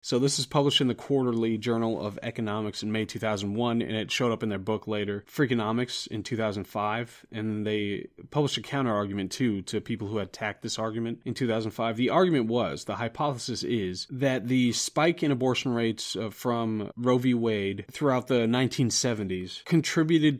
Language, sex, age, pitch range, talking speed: English, male, 30-49, 110-125 Hz, 170 wpm